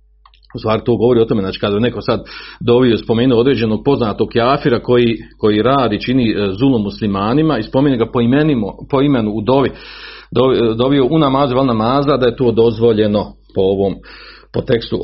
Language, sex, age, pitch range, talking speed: Croatian, male, 40-59, 95-120 Hz, 170 wpm